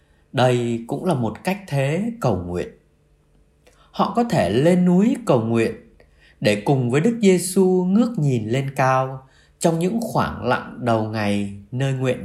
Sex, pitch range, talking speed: male, 100-170 Hz, 155 wpm